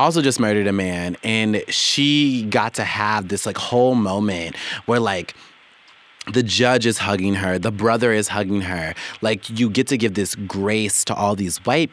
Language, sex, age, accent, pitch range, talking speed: English, male, 30-49, American, 95-115 Hz, 185 wpm